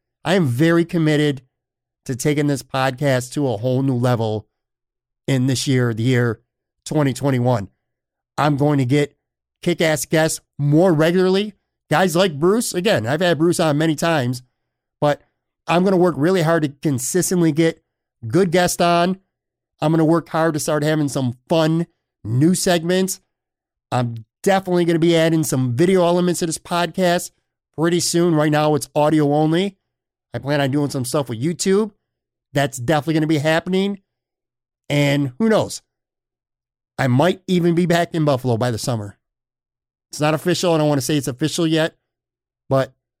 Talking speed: 165 wpm